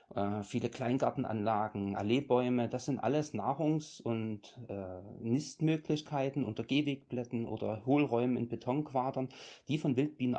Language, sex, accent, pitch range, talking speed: German, male, German, 110-135 Hz, 110 wpm